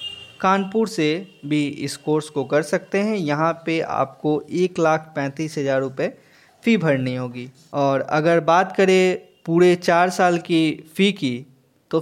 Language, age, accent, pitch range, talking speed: Hindi, 20-39, native, 140-180 Hz, 155 wpm